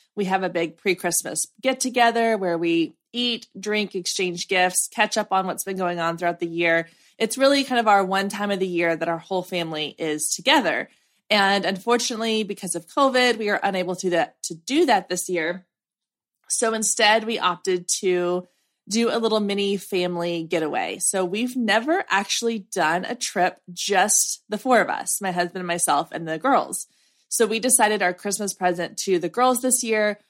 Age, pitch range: 20-39, 175-220 Hz